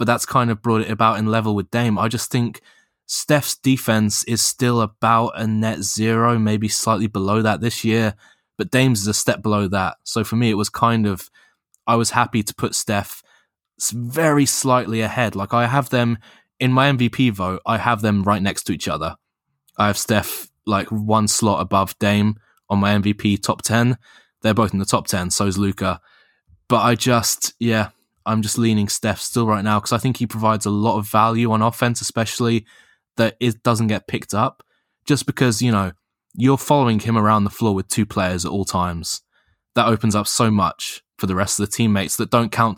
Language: English